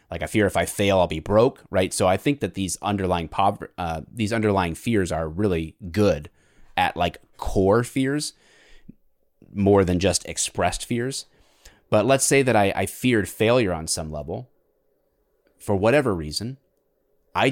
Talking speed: 165 wpm